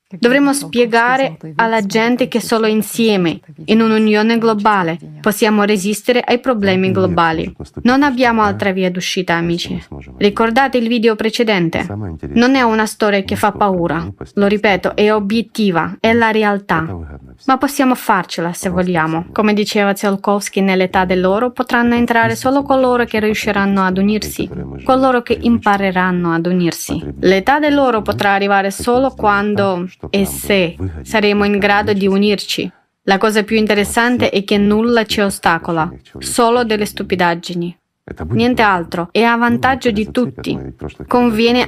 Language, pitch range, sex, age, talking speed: Italian, 195-240 Hz, female, 20-39, 140 wpm